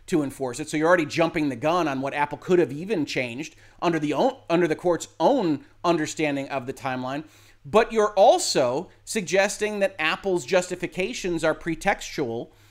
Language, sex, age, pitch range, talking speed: English, male, 30-49, 155-200 Hz, 170 wpm